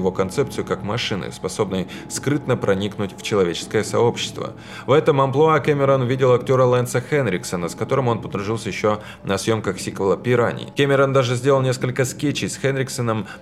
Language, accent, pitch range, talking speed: Russian, native, 105-135 Hz, 150 wpm